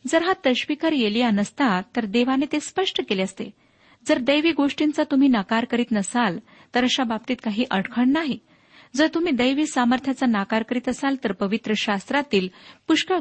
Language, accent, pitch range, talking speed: Marathi, native, 215-280 Hz, 160 wpm